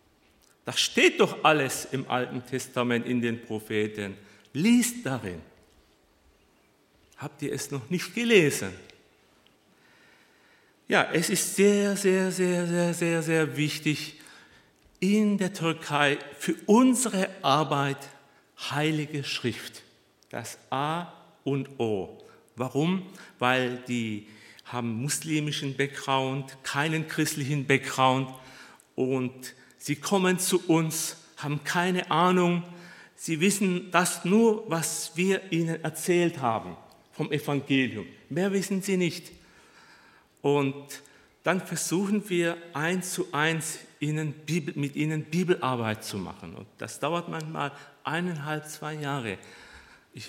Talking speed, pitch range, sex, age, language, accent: 115 wpm, 130-175 Hz, male, 50-69, German, German